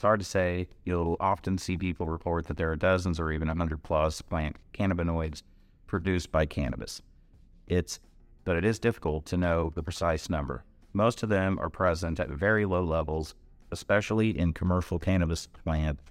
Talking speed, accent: 170 wpm, American